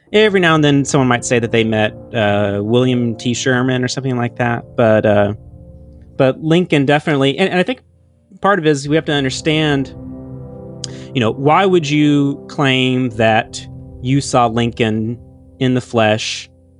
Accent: American